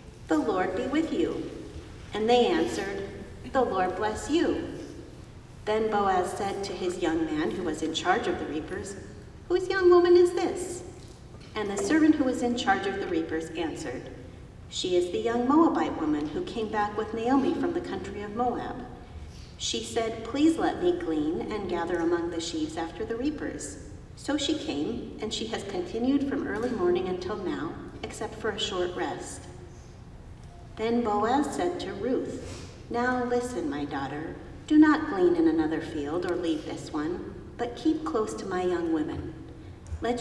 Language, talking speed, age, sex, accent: English, 175 wpm, 50-69, female, American